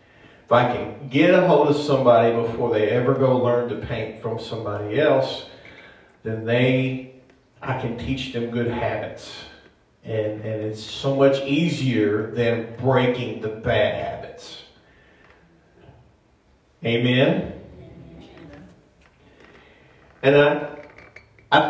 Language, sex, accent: English, male, American